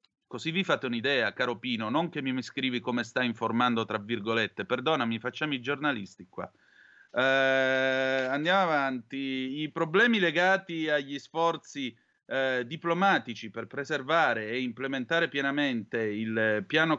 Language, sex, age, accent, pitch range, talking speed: Italian, male, 30-49, native, 115-160 Hz, 130 wpm